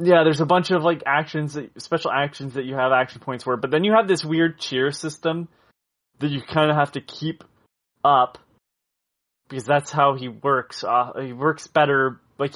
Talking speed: 200 wpm